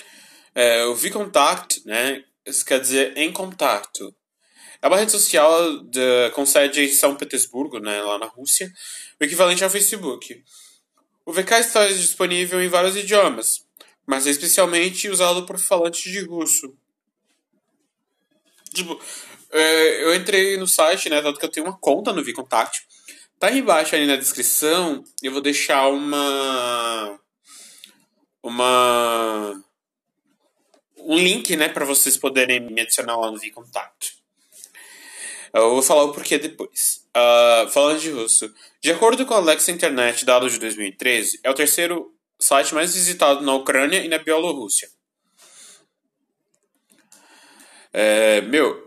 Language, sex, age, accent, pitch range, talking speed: Portuguese, male, 20-39, Brazilian, 125-190 Hz, 135 wpm